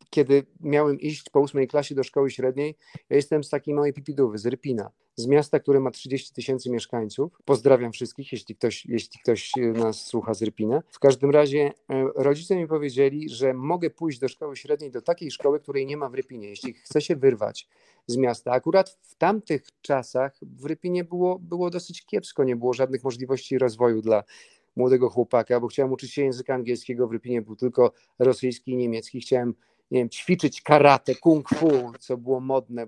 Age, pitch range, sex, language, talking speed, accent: 40-59, 125-145 Hz, male, Polish, 185 wpm, native